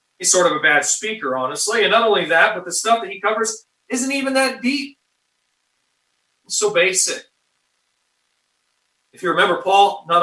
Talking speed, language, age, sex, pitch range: 170 wpm, English, 30-49, male, 135-205 Hz